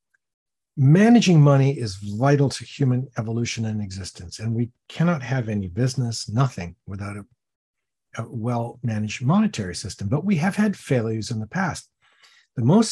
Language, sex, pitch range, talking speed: English, male, 115-165 Hz, 150 wpm